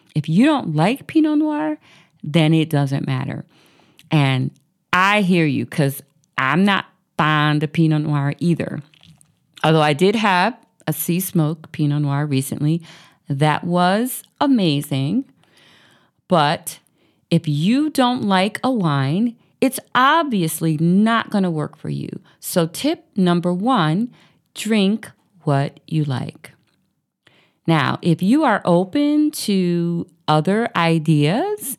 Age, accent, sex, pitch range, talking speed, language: 40-59, American, female, 155-220 Hz, 125 wpm, English